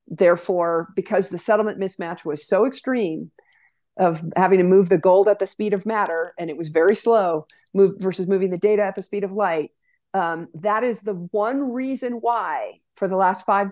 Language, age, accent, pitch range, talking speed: English, 50-69, American, 185-230 Hz, 195 wpm